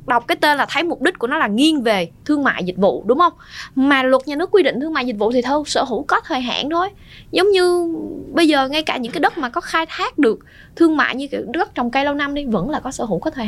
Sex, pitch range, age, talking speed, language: female, 195-290 Hz, 20-39, 300 wpm, Vietnamese